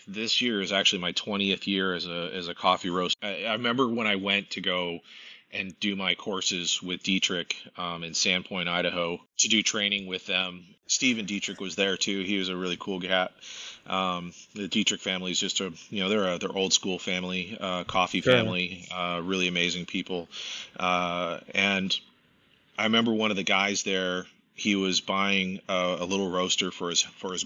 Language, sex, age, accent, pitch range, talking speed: English, male, 30-49, American, 90-100 Hz, 195 wpm